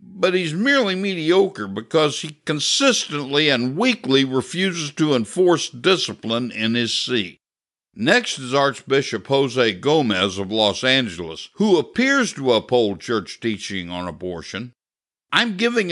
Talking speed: 130 wpm